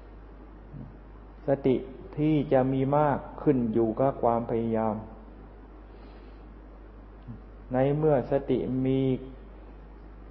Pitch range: 115-140 Hz